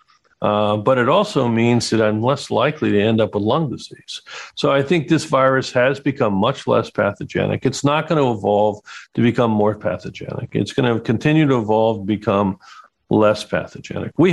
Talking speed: 175 wpm